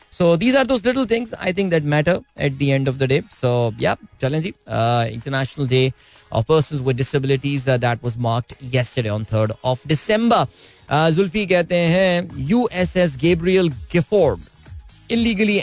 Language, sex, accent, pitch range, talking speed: Hindi, male, native, 125-170 Hz, 170 wpm